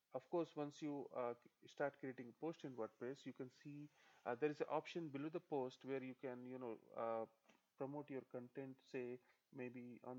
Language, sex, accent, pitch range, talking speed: English, male, Indian, 125-145 Hz, 200 wpm